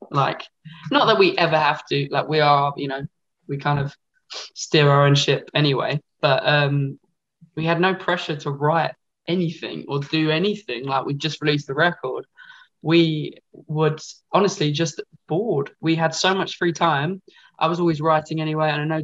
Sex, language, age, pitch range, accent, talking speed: male, English, 20-39, 145-170 Hz, British, 180 wpm